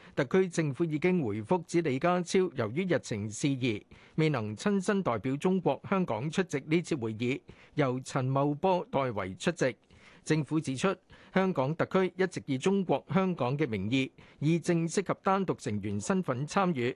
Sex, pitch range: male, 130-180 Hz